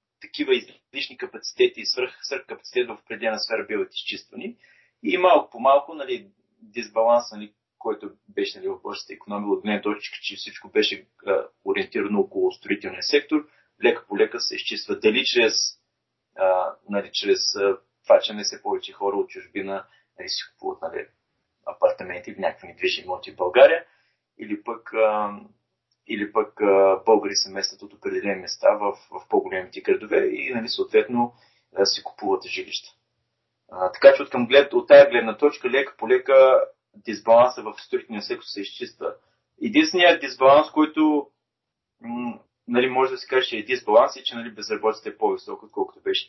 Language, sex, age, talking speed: Bulgarian, male, 30-49, 150 wpm